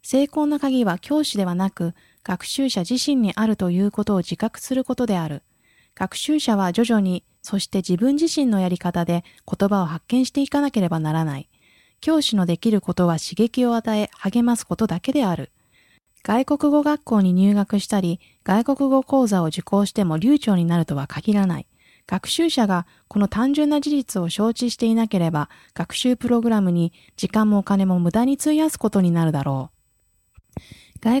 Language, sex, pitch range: Japanese, female, 180-255 Hz